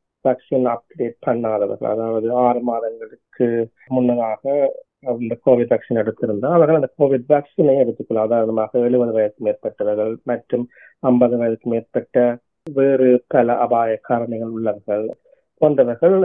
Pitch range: 115-130 Hz